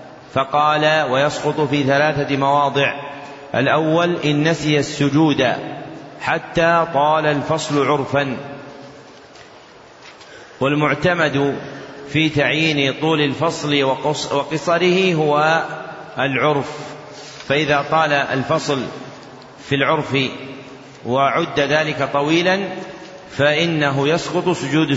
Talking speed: 75 wpm